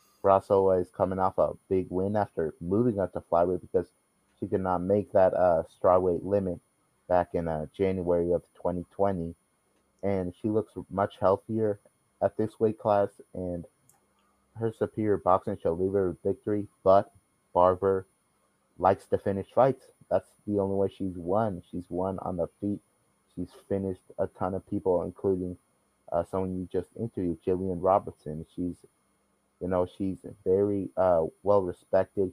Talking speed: 155 wpm